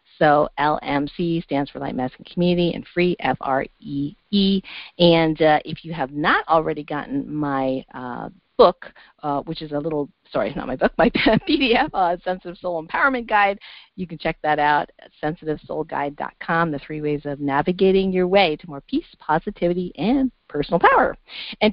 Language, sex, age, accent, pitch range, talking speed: English, female, 40-59, American, 155-200 Hz, 180 wpm